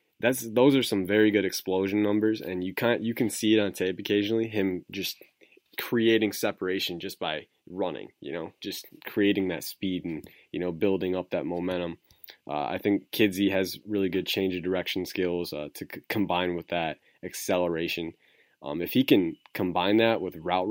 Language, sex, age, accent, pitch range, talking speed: English, male, 20-39, American, 90-110 Hz, 185 wpm